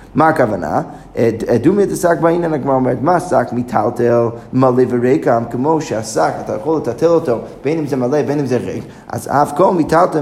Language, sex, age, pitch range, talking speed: Hebrew, male, 20-39, 125-165 Hz, 180 wpm